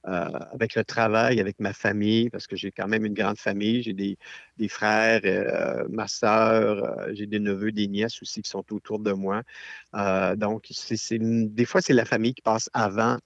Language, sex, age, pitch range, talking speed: French, male, 50-69, 100-115 Hz, 210 wpm